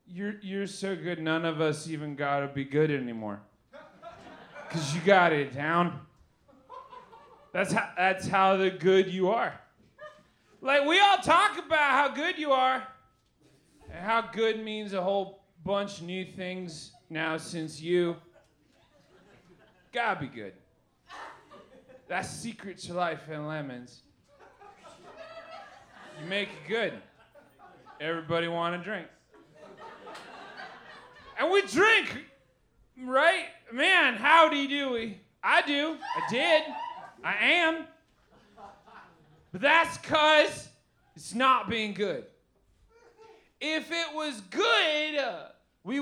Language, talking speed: English, 120 wpm